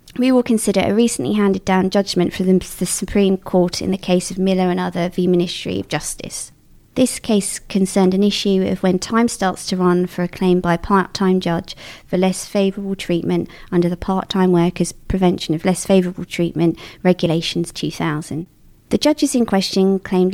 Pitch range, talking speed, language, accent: 175-195 Hz, 185 wpm, English, British